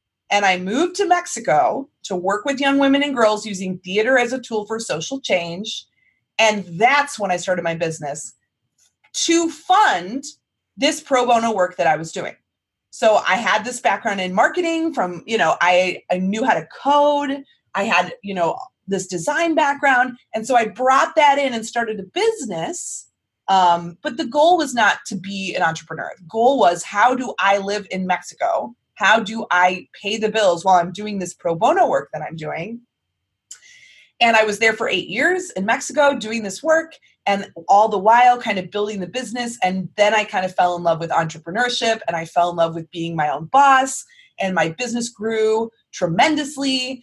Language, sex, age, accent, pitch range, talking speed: English, female, 30-49, American, 180-265 Hz, 195 wpm